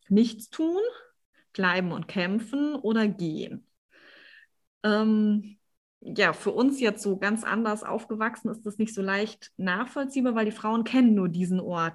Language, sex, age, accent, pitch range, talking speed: German, female, 20-39, German, 195-235 Hz, 145 wpm